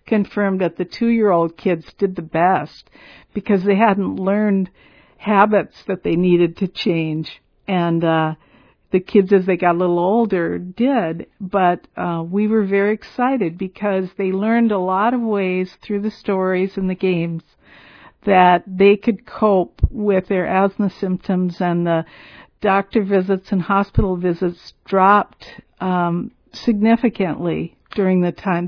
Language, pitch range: English, 180-215 Hz